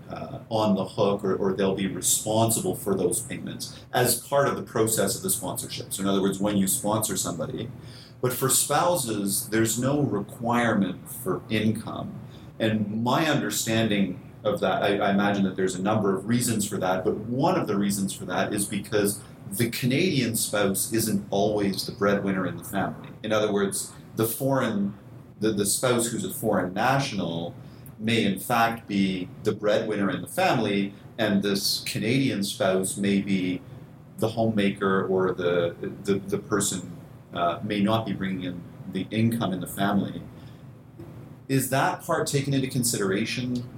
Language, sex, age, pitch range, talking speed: English, male, 40-59, 100-125 Hz, 165 wpm